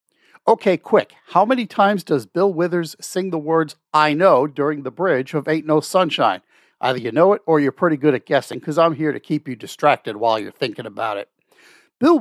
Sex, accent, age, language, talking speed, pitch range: male, American, 50-69, English, 210 wpm, 130-175 Hz